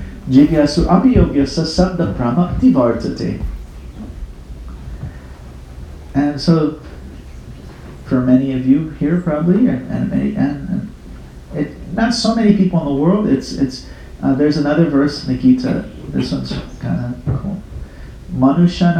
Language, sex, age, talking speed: English, male, 40-59, 90 wpm